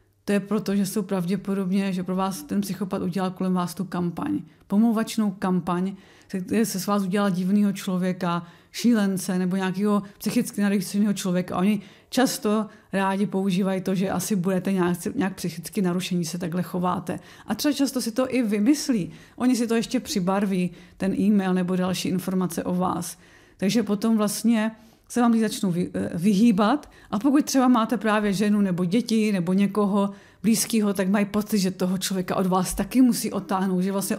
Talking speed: 170 wpm